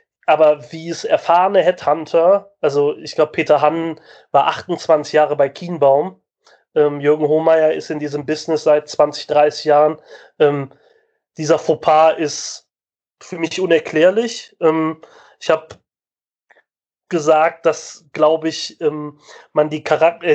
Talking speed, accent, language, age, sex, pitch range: 130 wpm, German, German, 30-49, male, 150-175 Hz